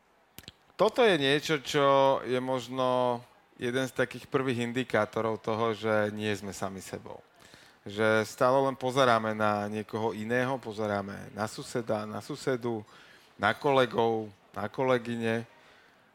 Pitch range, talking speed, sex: 110-130 Hz, 125 wpm, male